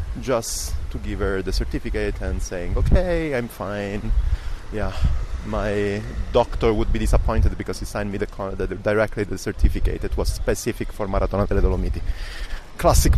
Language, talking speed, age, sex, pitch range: English, 140 wpm, 30-49, male, 90-115 Hz